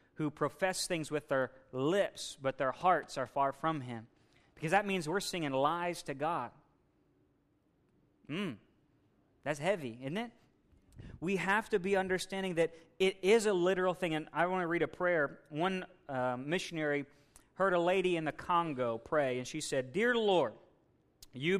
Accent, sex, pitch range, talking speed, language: American, male, 130-175 Hz, 165 wpm, English